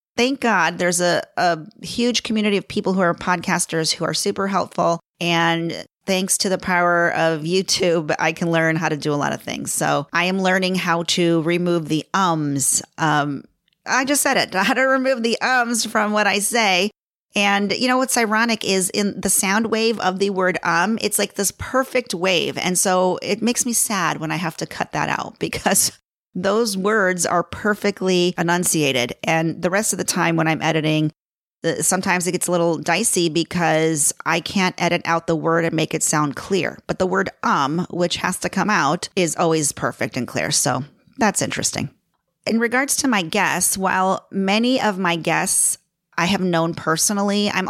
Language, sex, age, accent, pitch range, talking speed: English, female, 40-59, American, 165-205 Hz, 190 wpm